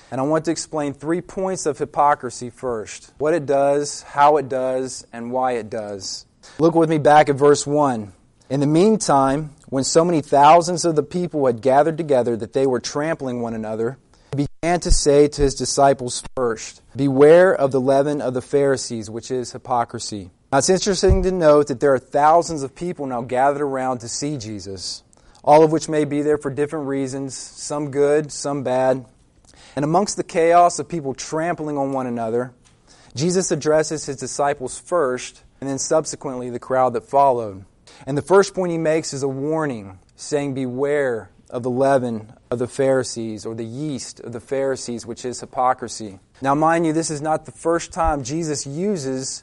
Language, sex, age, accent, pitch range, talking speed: English, male, 30-49, American, 125-150 Hz, 185 wpm